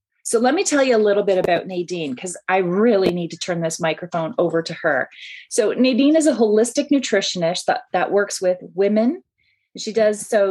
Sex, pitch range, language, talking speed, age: female, 180-230 Hz, English, 200 wpm, 30-49